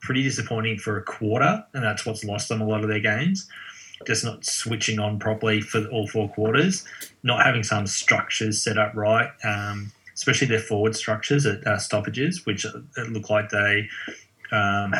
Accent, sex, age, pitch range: Australian, male, 20-39, 100-110 Hz